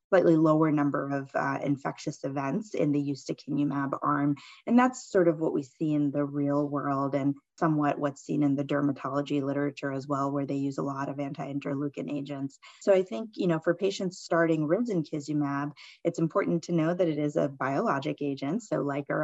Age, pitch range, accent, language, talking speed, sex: 20-39, 140-155 Hz, American, English, 200 wpm, female